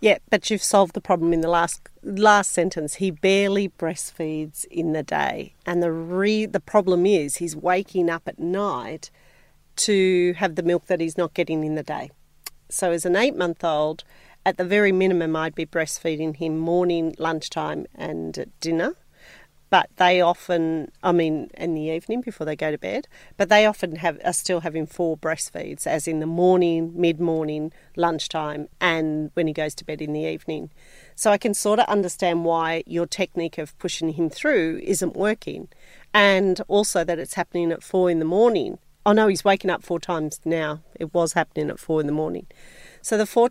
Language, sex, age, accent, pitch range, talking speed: English, female, 40-59, Australian, 160-190 Hz, 190 wpm